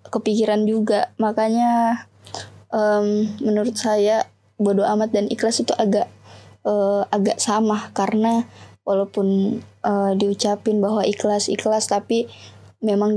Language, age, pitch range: Indonesian, 20-39, 200-220 Hz